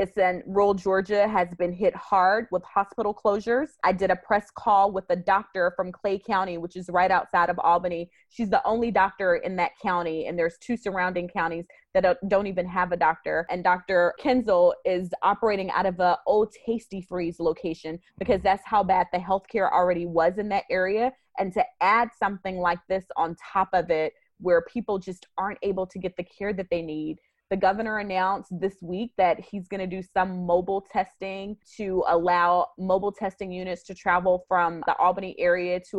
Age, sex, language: 20-39, female, English